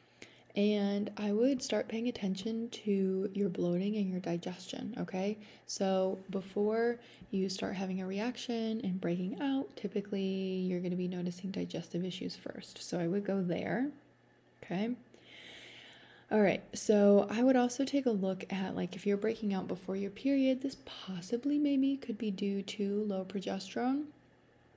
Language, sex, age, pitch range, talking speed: English, female, 20-39, 190-225 Hz, 155 wpm